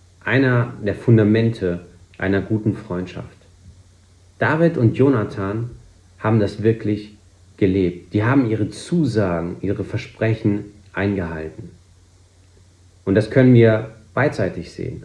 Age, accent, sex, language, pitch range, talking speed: 40-59, German, male, German, 90-120 Hz, 105 wpm